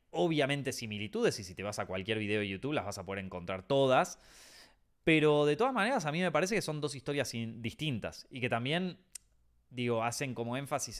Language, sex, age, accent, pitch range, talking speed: Spanish, male, 20-39, Argentinian, 110-170 Hz, 205 wpm